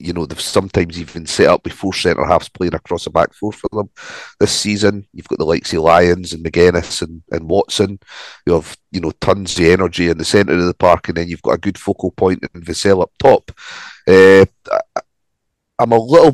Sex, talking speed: male, 215 wpm